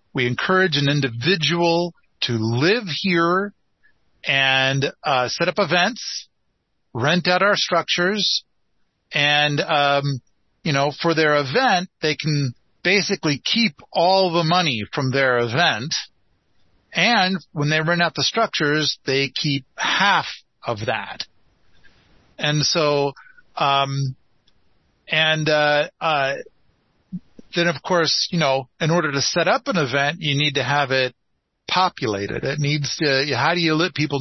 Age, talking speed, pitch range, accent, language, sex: 40-59, 135 wpm, 135-175 Hz, American, English, male